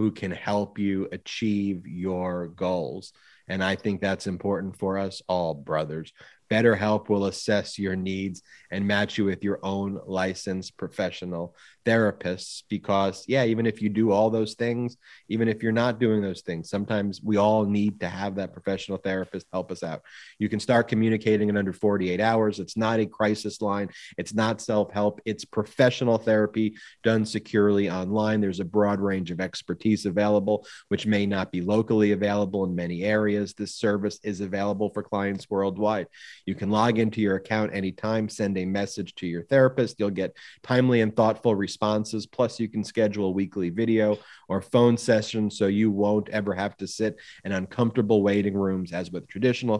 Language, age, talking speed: English, 30-49, 175 wpm